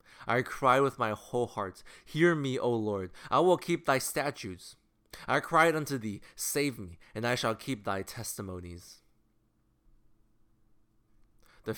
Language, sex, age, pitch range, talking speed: English, male, 20-39, 105-135 Hz, 145 wpm